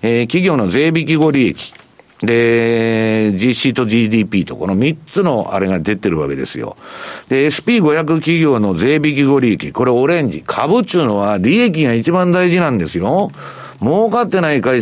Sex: male